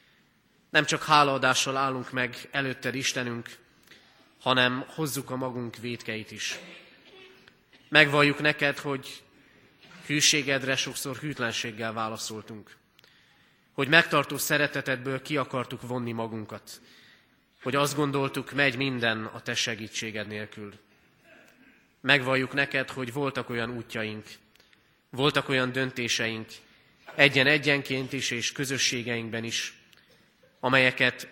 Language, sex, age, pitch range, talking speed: Hungarian, male, 30-49, 115-140 Hz, 100 wpm